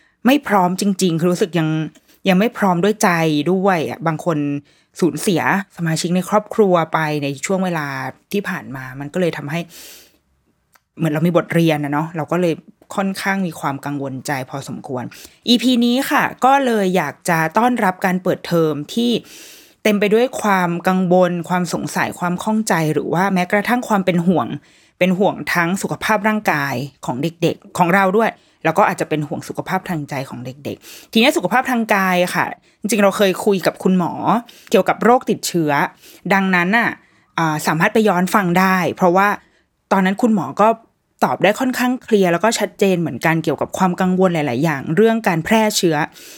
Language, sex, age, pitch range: Thai, female, 20-39, 160-205 Hz